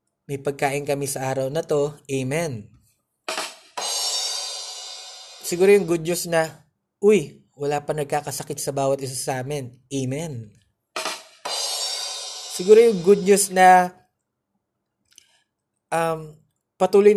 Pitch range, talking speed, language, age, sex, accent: 140-205 Hz, 105 wpm, Filipino, 20-39, male, native